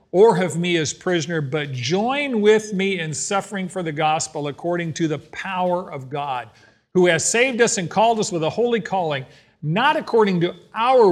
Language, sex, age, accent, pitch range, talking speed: English, male, 50-69, American, 145-195 Hz, 190 wpm